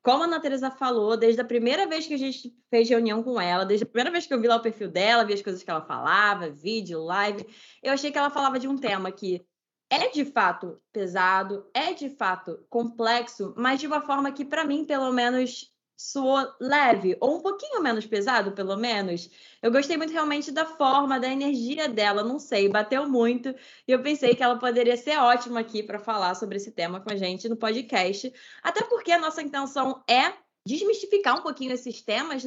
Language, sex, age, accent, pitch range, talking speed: Portuguese, female, 20-39, Brazilian, 215-290 Hz, 205 wpm